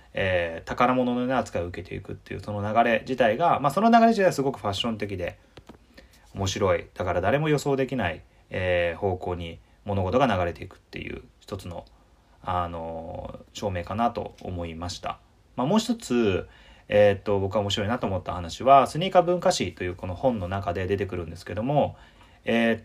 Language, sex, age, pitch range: Japanese, male, 30-49, 90-130 Hz